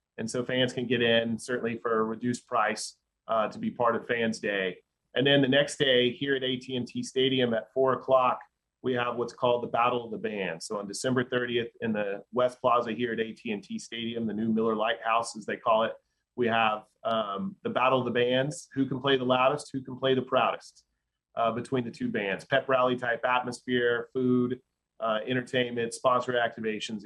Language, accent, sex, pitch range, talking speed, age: English, American, male, 115-130 Hz, 200 wpm, 30-49